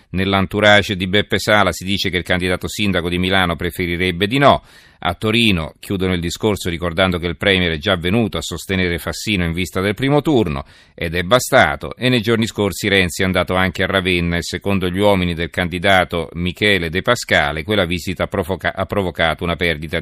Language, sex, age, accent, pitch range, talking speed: Italian, male, 40-59, native, 90-105 Hz, 190 wpm